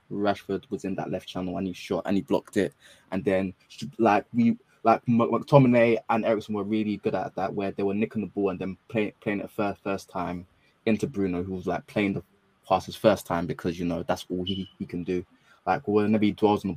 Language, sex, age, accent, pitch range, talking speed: English, male, 20-39, British, 95-110 Hz, 235 wpm